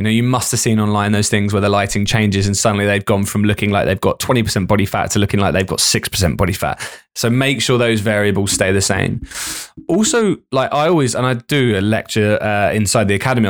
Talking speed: 240 wpm